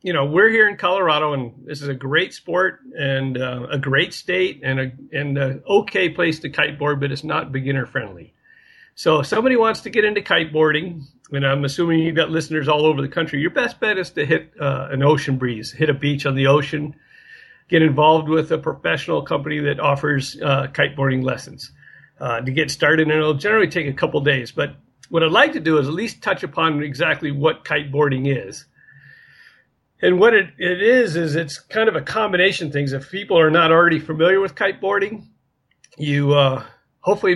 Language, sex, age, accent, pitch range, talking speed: English, male, 50-69, American, 140-185 Hz, 200 wpm